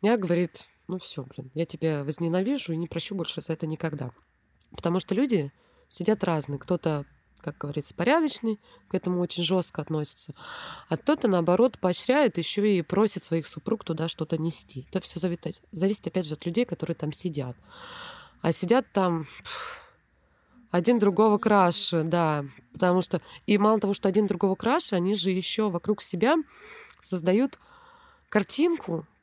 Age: 20-39